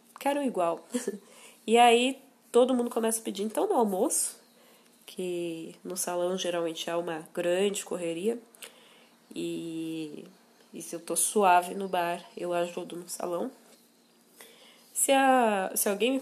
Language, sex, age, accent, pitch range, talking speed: Portuguese, female, 20-39, Brazilian, 185-250 Hz, 135 wpm